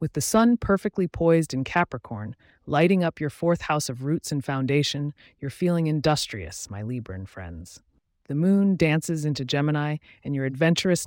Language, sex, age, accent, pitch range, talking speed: English, female, 30-49, American, 115-160 Hz, 165 wpm